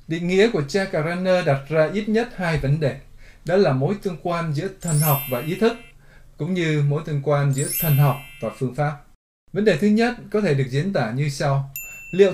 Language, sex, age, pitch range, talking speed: Vietnamese, male, 20-39, 140-185 Hz, 220 wpm